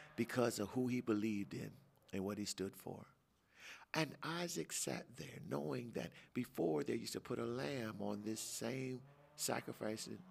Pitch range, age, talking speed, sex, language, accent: 100-125 Hz, 50-69, 165 wpm, male, English, American